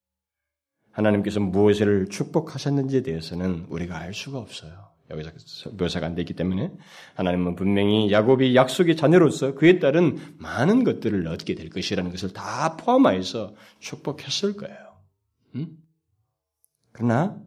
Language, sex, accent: Korean, male, native